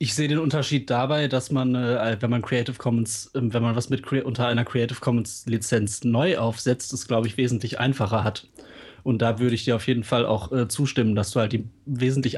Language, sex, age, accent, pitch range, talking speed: German, male, 30-49, German, 115-130 Hz, 230 wpm